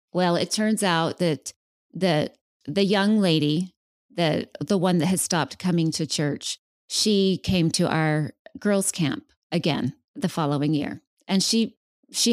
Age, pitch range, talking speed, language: 30-49, 165-210 Hz, 150 wpm, English